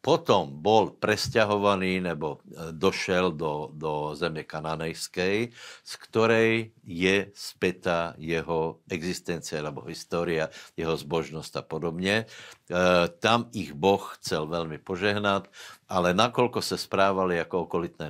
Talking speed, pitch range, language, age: 110 wpm, 85-95 Hz, Slovak, 60-79